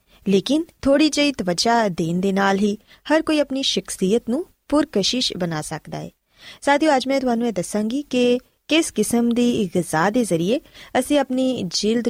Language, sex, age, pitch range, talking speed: Punjabi, female, 20-39, 190-255 Hz, 160 wpm